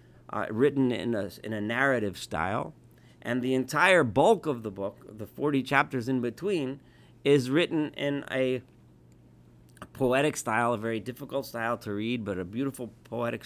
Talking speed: 160 wpm